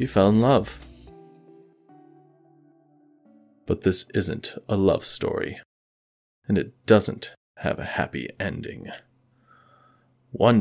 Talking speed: 100 wpm